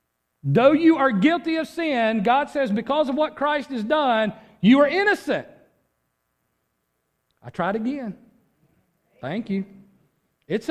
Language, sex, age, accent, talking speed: English, male, 40-59, American, 130 wpm